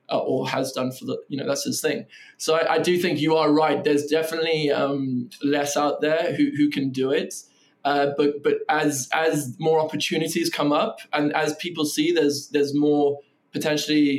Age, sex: 20-39, male